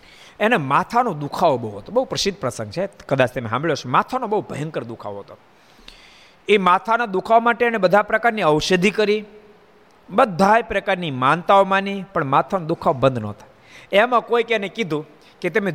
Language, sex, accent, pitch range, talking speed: Gujarati, male, native, 170-230 Hz, 160 wpm